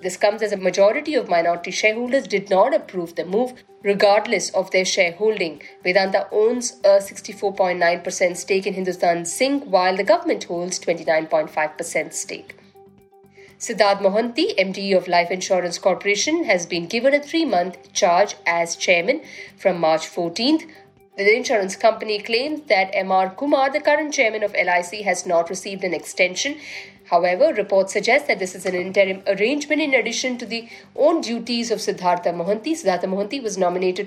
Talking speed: 155 wpm